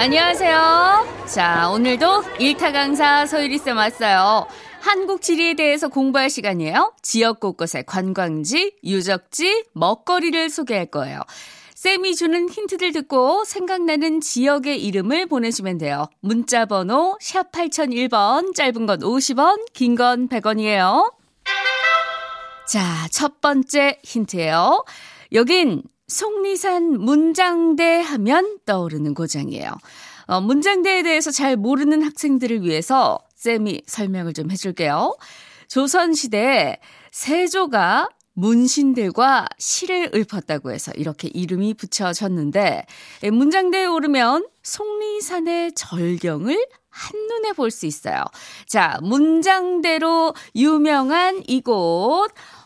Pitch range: 210-345 Hz